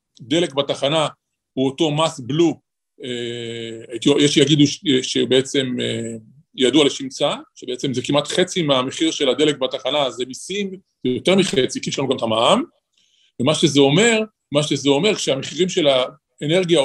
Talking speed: 145 wpm